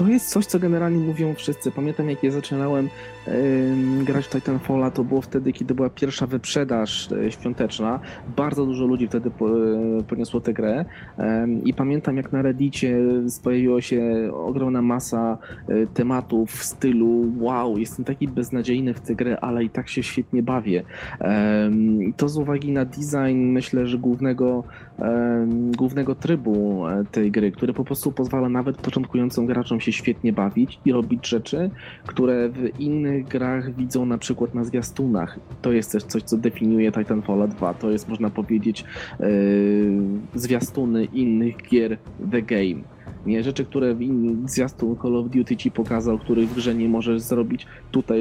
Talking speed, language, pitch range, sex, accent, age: 155 wpm, Polish, 110-130 Hz, male, native, 20-39